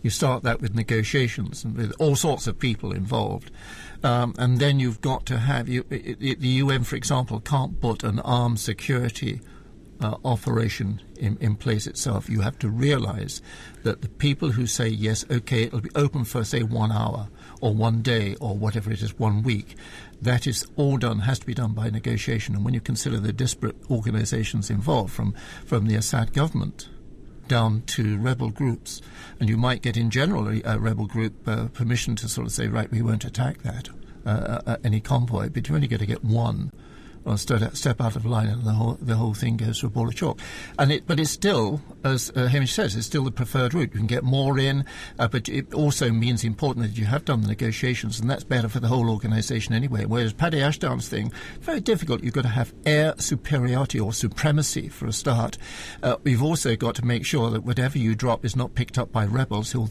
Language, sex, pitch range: English, male, 110-130 Hz